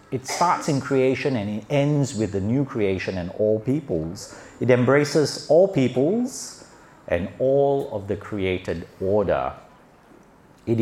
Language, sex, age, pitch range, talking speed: English, male, 50-69, 100-135 Hz, 140 wpm